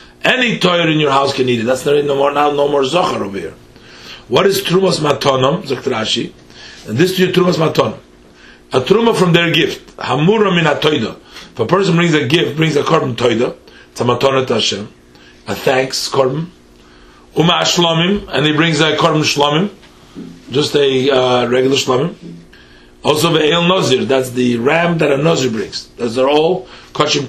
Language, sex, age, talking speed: English, male, 40-59, 180 wpm